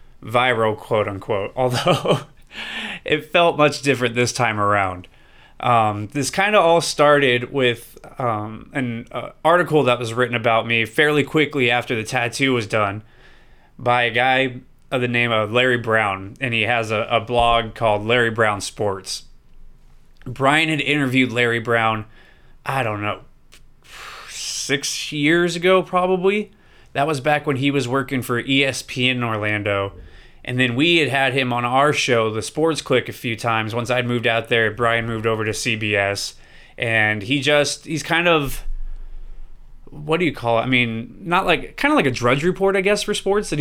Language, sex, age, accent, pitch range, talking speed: English, male, 20-39, American, 115-140 Hz, 175 wpm